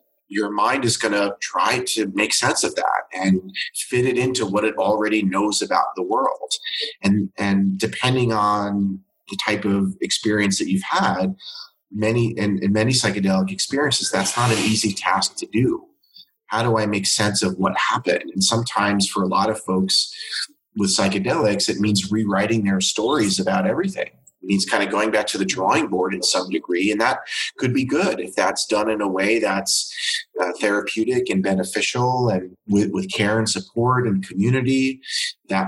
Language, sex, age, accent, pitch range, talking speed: English, male, 30-49, American, 100-120 Hz, 180 wpm